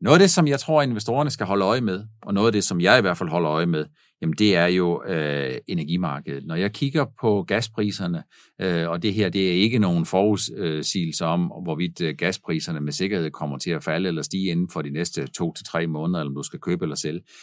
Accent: native